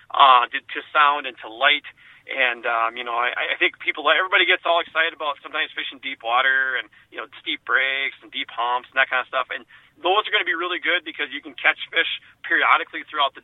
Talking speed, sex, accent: 235 wpm, male, American